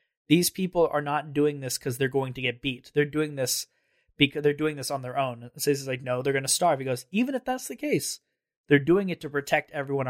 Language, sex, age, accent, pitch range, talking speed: English, male, 20-39, American, 130-150 Hz, 255 wpm